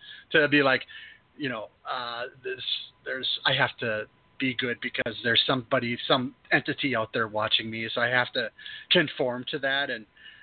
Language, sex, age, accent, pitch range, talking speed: English, male, 30-49, American, 125-150 Hz, 175 wpm